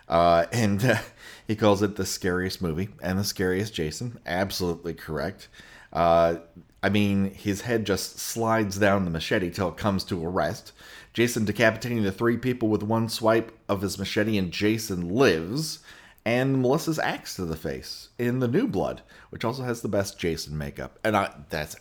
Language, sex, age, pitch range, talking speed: English, male, 30-49, 85-115 Hz, 175 wpm